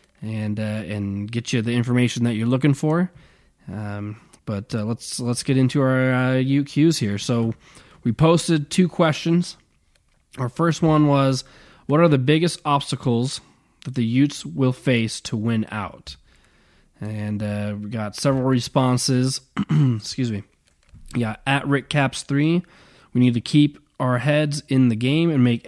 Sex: male